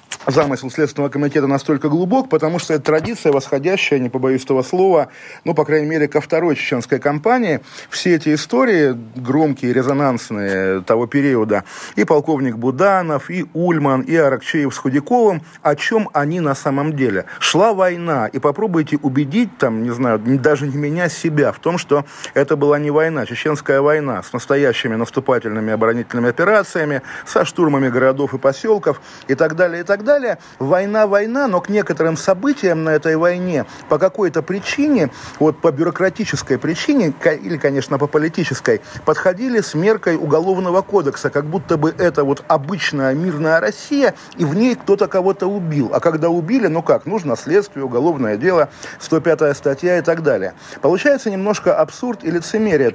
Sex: male